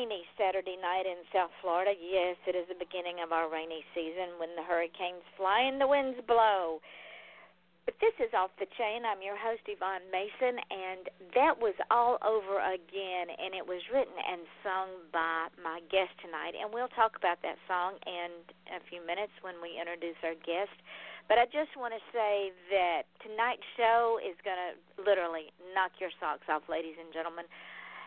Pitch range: 175-215 Hz